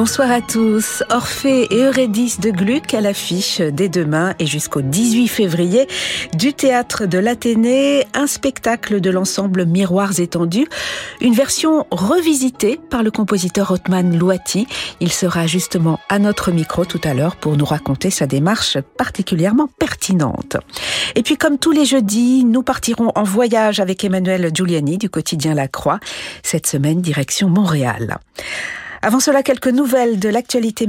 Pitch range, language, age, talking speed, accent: 175-235 Hz, French, 50-69, 150 wpm, French